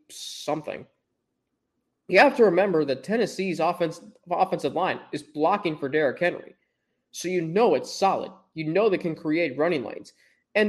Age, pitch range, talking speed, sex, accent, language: 20-39, 170-230 Hz, 155 wpm, male, American, English